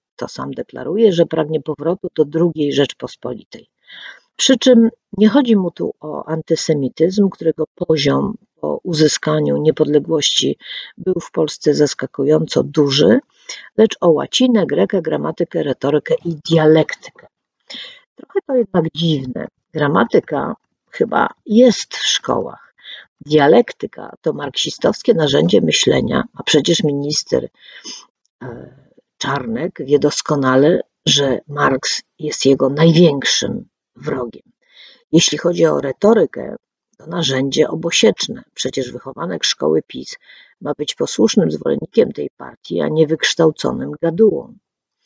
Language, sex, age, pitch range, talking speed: Polish, female, 50-69, 150-210 Hz, 110 wpm